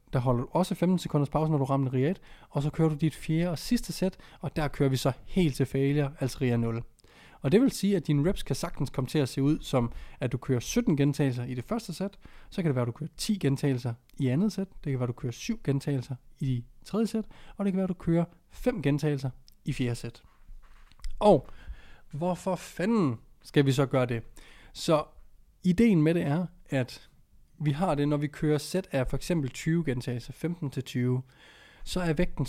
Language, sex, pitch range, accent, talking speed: Danish, male, 130-165 Hz, native, 225 wpm